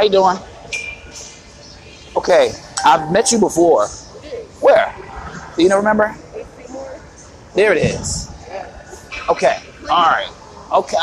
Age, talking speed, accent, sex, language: 30-49, 110 wpm, American, male, English